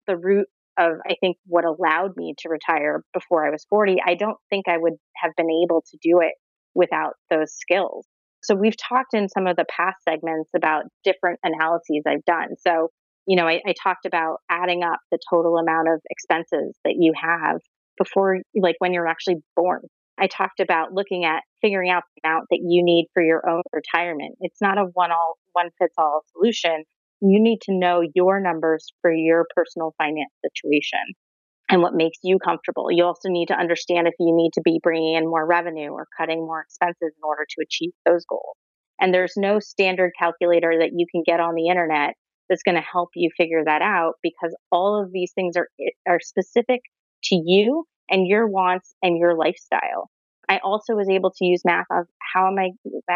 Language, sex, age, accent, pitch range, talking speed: English, female, 30-49, American, 165-190 Hz, 195 wpm